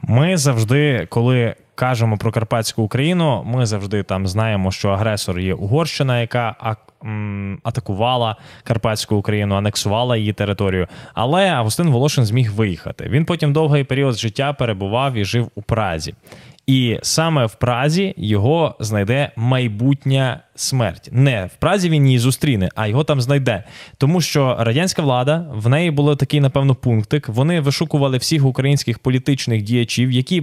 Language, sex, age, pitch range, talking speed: Ukrainian, male, 10-29, 115-145 Hz, 145 wpm